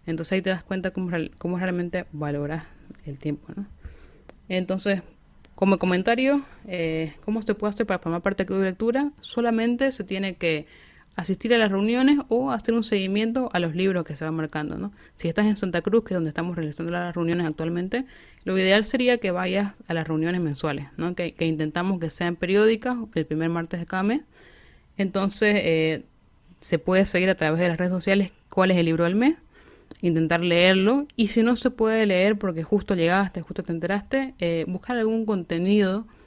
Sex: female